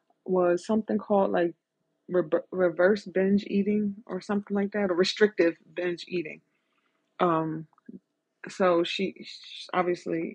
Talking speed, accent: 120 wpm, American